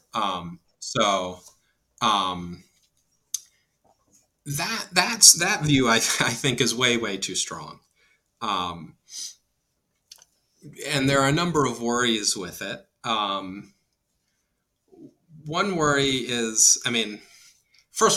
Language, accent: English, American